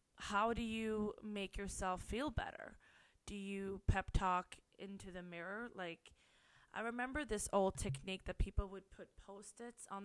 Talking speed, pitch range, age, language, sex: 155 wpm, 185-210 Hz, 20-39, English, female